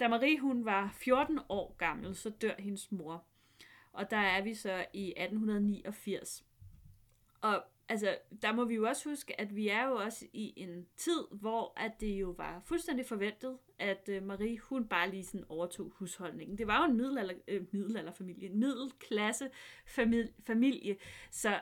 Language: Danish